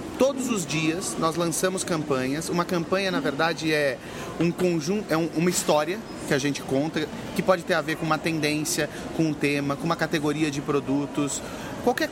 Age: 30-49